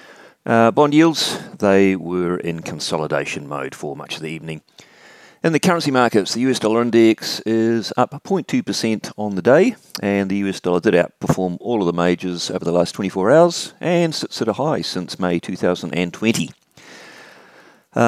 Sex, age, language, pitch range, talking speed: male, 40-59, English, 85-110 Hz, 170 wpm